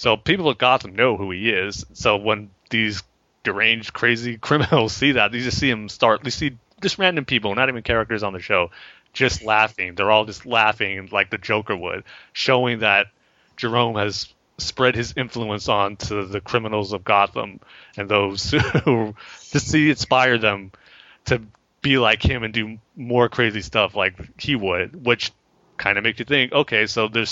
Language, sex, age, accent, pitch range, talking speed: English, male, 30-49, American, 105-130 Hz, 180 wpm